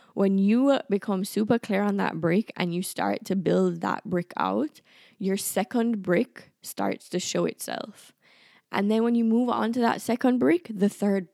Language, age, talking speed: English, 10-29, 185 wpm